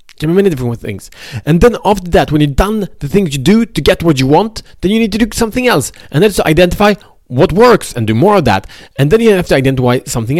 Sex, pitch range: male, 120-180 Hz